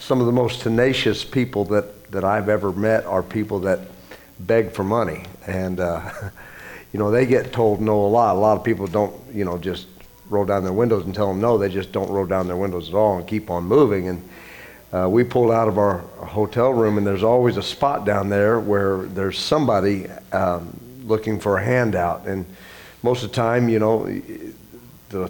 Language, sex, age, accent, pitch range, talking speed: English, male, 50-69, American, 95-120 Hz, 210 wpm